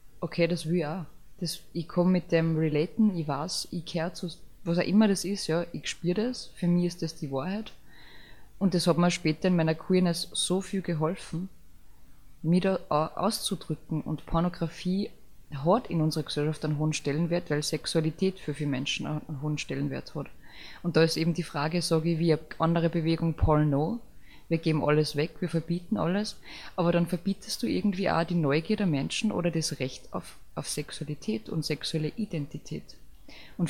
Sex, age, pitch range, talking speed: female, 20-39, 155-180 Hz, 185 wpm